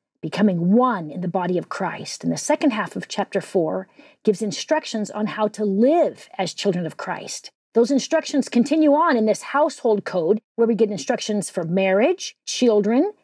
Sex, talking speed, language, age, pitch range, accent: female, 175 wpm, English, 40-59, 215-295 Hz, American